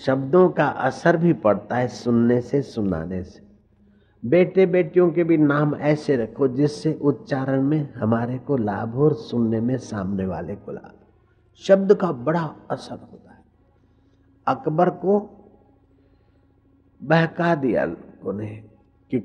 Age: 50-69